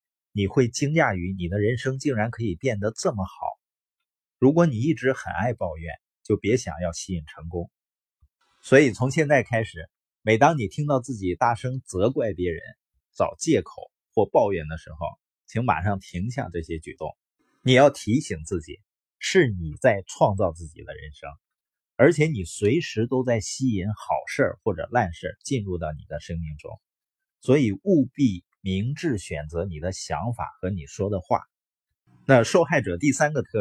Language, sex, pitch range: Chinese, male, 90-130 Hz